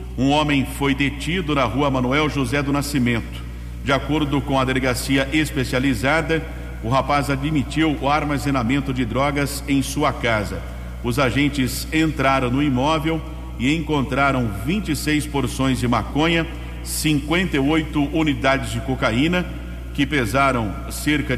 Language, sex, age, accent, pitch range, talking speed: English, male, 50-69, Brazilian, 125-145 Hz, 125 wpm